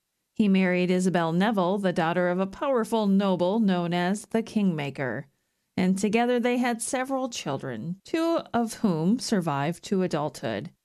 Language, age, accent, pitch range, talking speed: English, 40-59, American, 165-220 Hz, 145 wpm